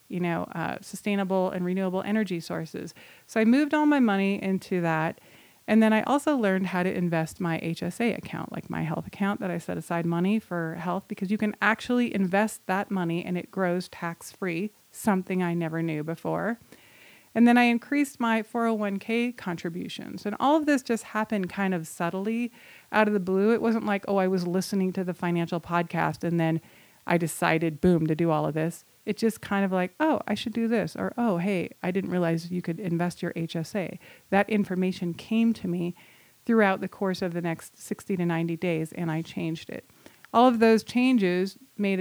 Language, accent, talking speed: English, American, 200 wpm